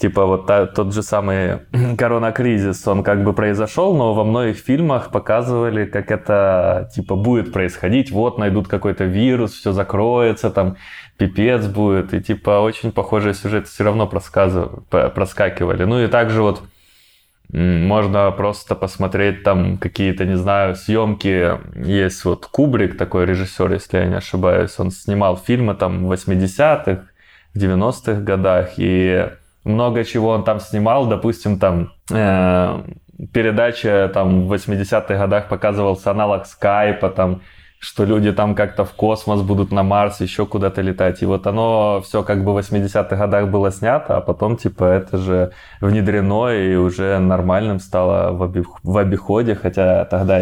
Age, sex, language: 20-39, male, Russian